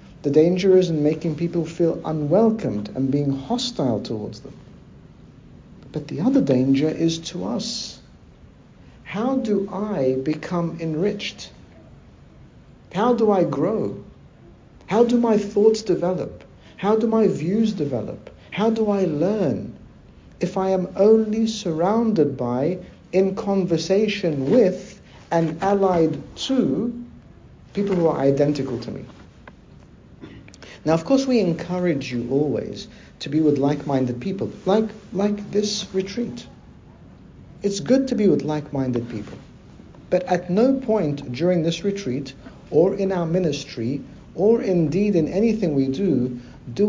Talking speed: 130 wpm